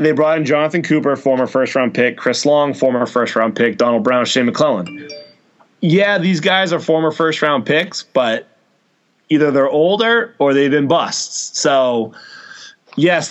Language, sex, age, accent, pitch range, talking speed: English, male, 20-39, American, 125-155 Hz, 155 wpm